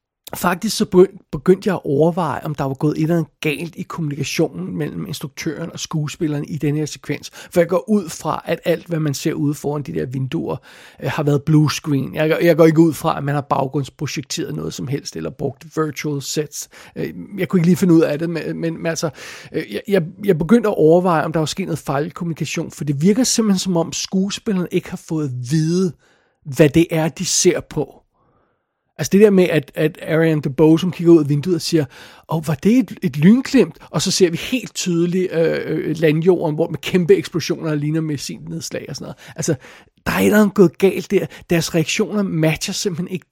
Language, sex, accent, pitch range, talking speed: English, male, Danish, 150-180 Hz, 210 wpm